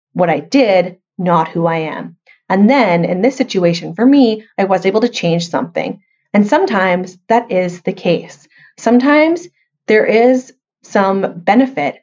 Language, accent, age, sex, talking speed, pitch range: English, American, 20-39, female, 155 wpm, 175-245 Hz